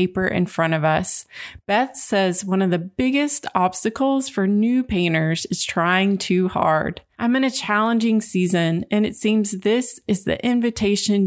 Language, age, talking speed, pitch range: English, 30-49, 165 wpm, 185-225 Hz